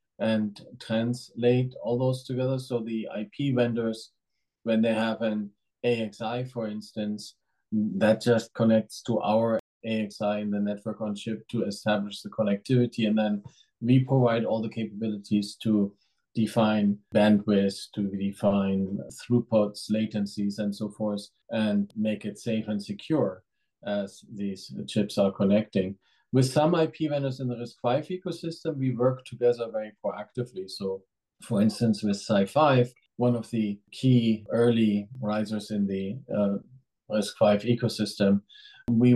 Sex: male